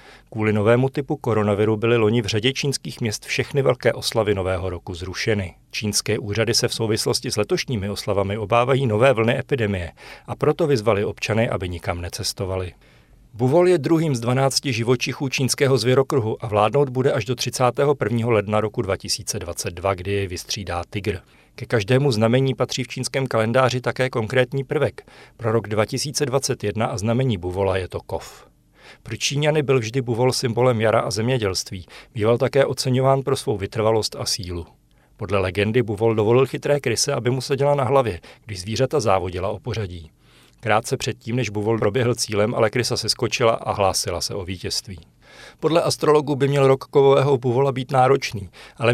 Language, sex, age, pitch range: Czech, male, 40-59, 105-135 Hz